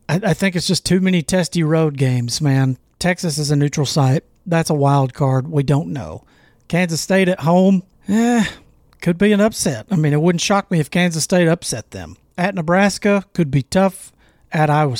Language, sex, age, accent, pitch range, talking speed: English, male, 40-59, American, 145-185 Hz, 195 wpm